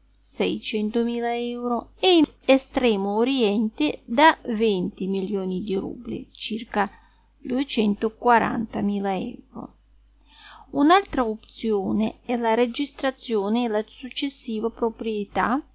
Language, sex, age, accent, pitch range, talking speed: Italian, female, 30-49, native, 210-260 Hz, 90 wpm